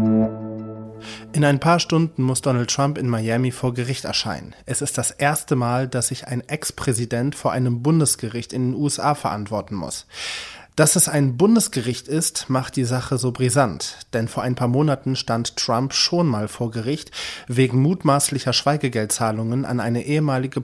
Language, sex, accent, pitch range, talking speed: German, male, German, 120-150 Hz, 165 wpm